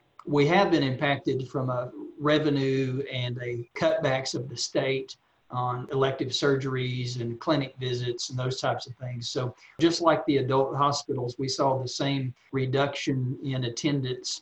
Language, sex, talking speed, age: English, male, 155 wpm, 50-69